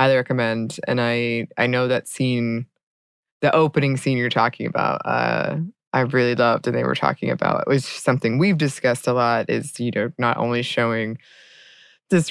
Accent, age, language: American, 20-39, English